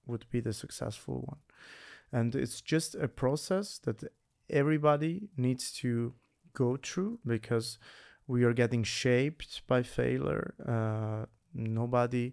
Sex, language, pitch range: male, English, 120-140 Hz